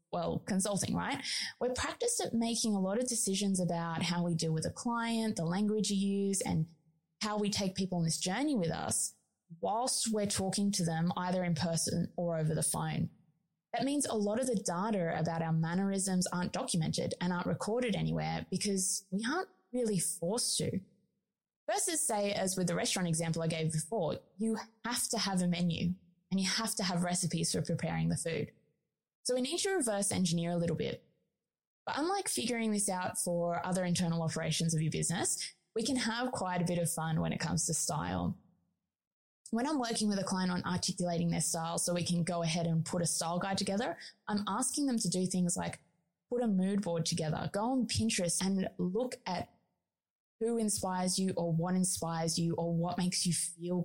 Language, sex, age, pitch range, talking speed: English, female, 20-39, 170-210 Hz, 195 wpm